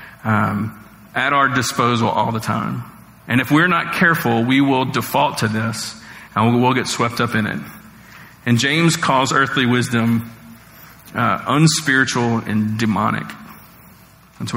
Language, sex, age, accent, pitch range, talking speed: English, male, 40-59, American, 115-145 Hz, 140 wpm